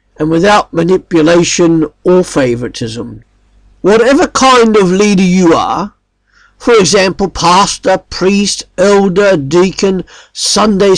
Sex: male